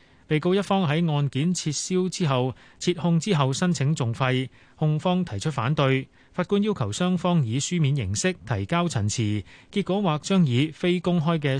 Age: 30-49